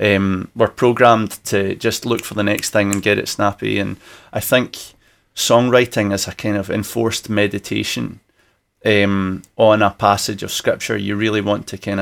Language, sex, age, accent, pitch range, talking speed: English, male, 30-49, British, 100-120 Hz, 175 wpm